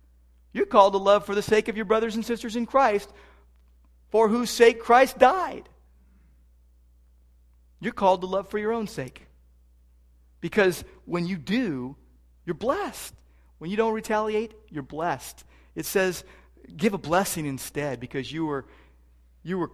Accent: American